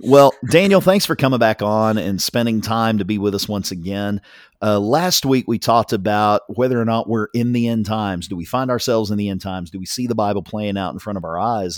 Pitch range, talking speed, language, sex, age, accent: 95-115 Hz, 255 wpm, English, male, 40-59, American